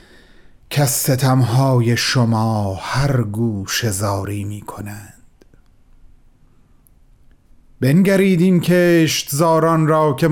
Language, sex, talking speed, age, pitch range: Persian, male, 75 wpm, 40-59, 110-155 Hz